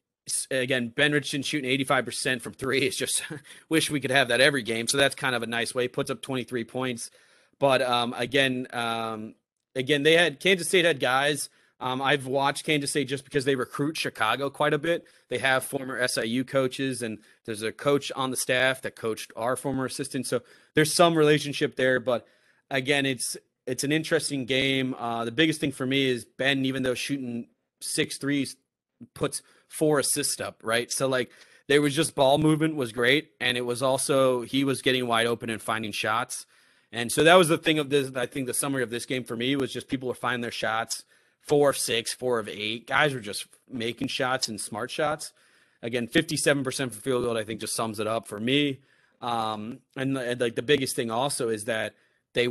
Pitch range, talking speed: 120-145 Hz, 210 wpm